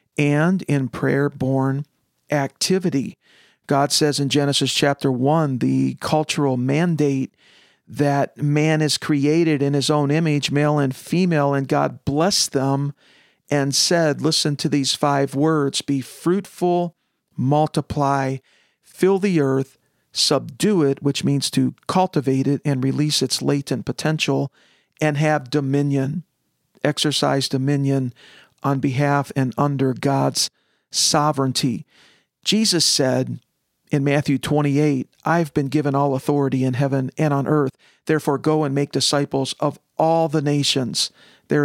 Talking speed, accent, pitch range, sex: 130 wpm, American, 135-150 Hz, male